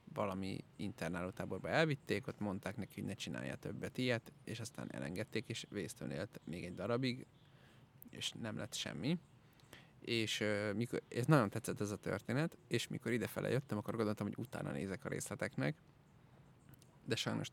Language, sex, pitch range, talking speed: Hungarian, male, 105-140 Hz, 150 wpm